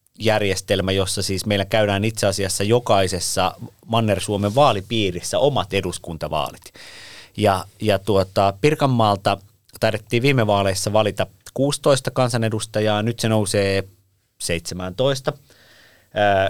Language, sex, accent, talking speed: Finnish, male, native, 100 wpm